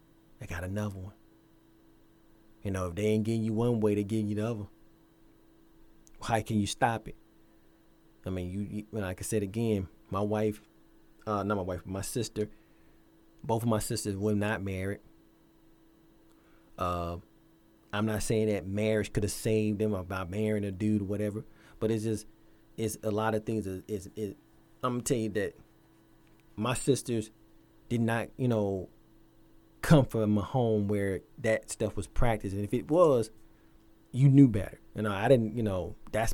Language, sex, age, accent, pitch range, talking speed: English, male, 30-49, American, 100-115 Hz, 180 wpm